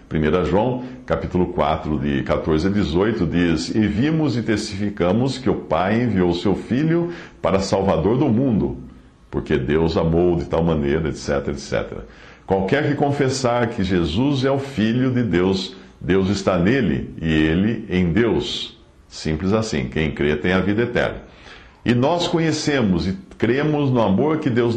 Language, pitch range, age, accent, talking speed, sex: English, 85-125 Hz, 60-79, Brazilian, 155 wpm, male